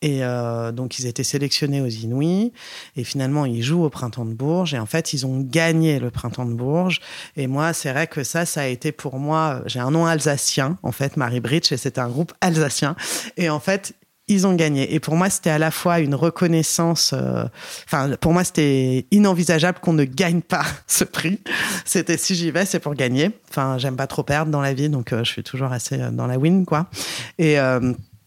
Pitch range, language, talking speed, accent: 130-160 Hz, French, 220 wpm, French